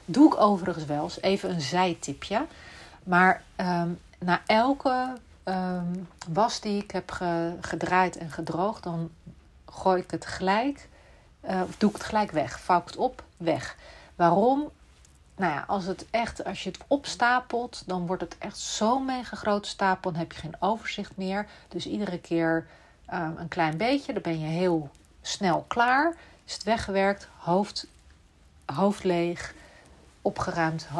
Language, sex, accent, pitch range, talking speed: Dutch, female, Dutch, 170-215 Hz, 155 wpm